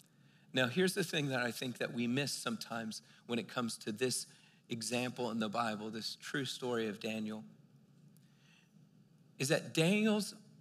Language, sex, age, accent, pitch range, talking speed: English, male, 40-59, American, 140-185 Hz, 160 wpm